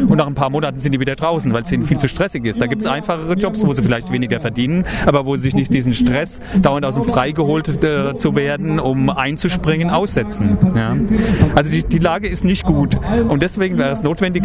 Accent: German